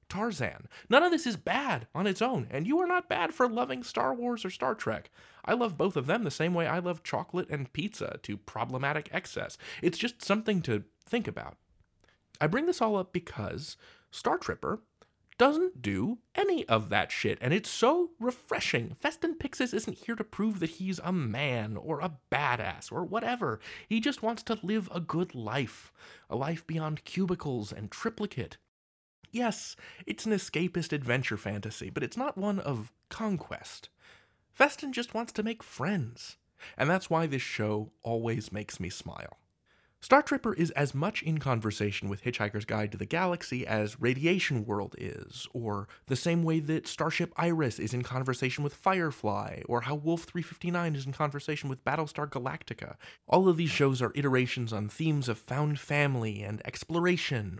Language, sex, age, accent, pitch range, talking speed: English, male, 30-49, American, 125-200 Hz, 175 wpm